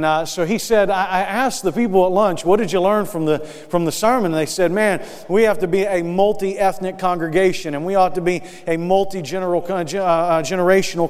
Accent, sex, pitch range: American, male, 155-185 Hz